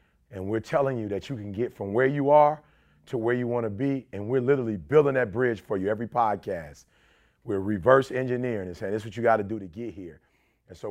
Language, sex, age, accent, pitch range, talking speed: English, male, 40-59, American, 115-160 Hz, 250 wpm